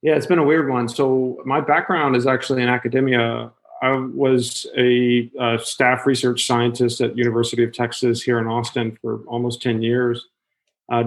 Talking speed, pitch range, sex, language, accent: 175 wpm, 120-135 Hz, male, English, American